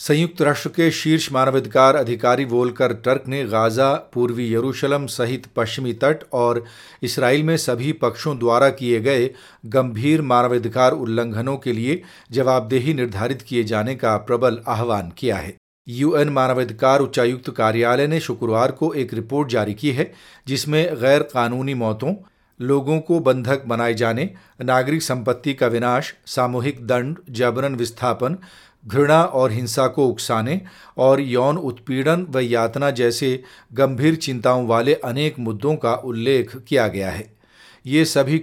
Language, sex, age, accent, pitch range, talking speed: Hindi, male, 40-59, native, 120-145 Hz, 140 wpm